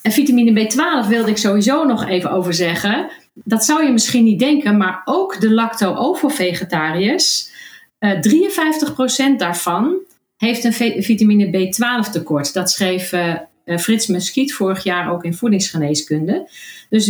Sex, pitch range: female, 185-250 Hz